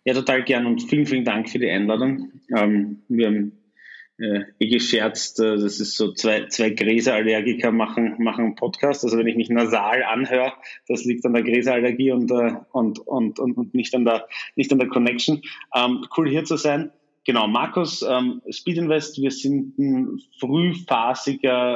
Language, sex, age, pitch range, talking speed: German, male, 30-49, 115-135 Hz, 175 wpm